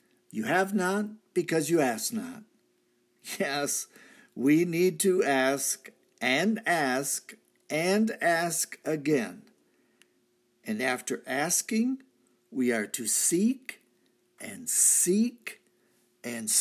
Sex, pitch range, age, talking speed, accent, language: male, 130-215 Hz, 50-69, 100 wpm, American, English